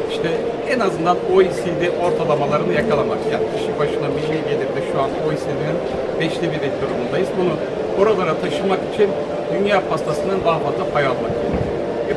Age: 60-79